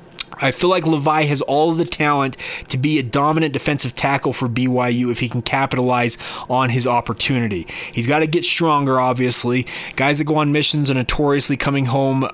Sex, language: male, English